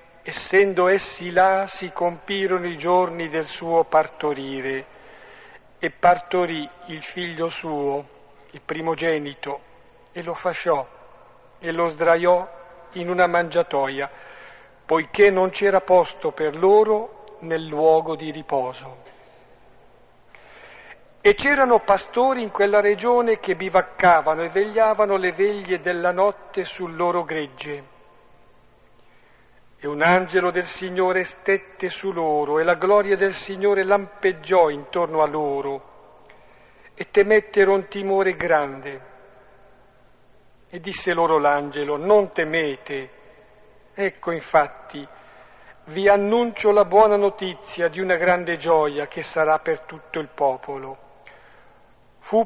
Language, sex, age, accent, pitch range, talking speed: Italian, male, 50-69, native, 155-195 Hz, 110 wpm